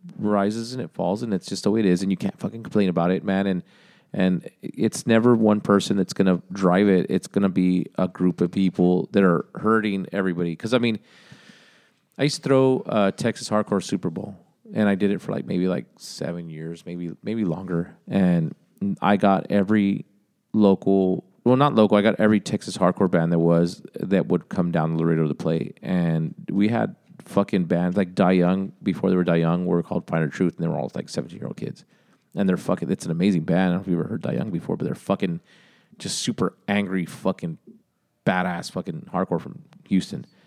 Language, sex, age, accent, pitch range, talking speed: English, male, 30-49, American, 90-105 Hz, 215 wpm